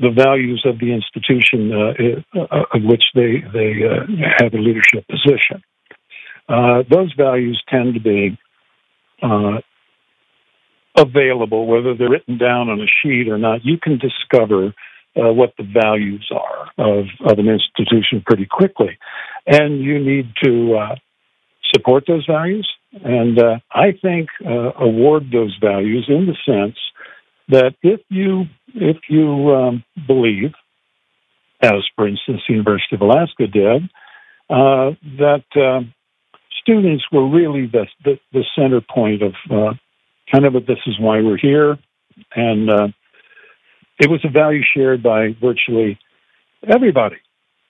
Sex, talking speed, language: male, 140 wpm, English